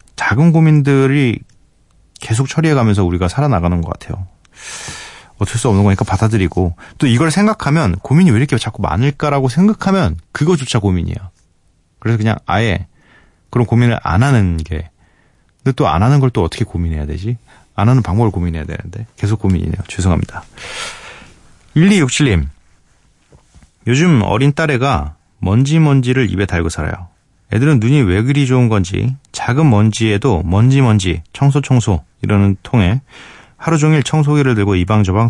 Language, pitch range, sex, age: Korean, 90-130 Hz, male, 30-49